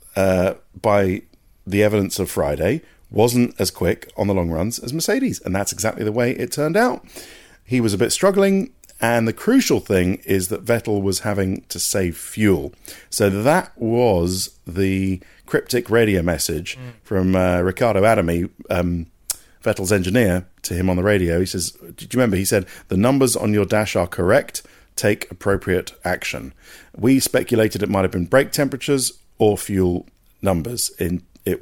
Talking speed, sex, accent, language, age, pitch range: 170 wpm, male, British, English, 40-59, 90-115 Hz